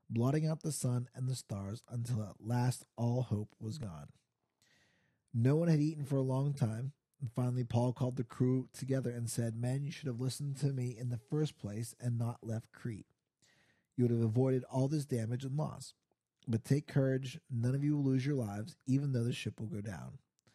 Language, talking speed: English, 210 wpm